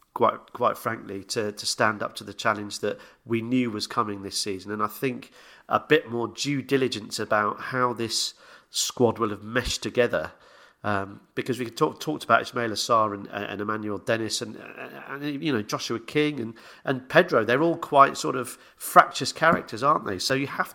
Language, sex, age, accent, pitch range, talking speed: English, male, 40-59, British, 105-135 Hz, 190 wpm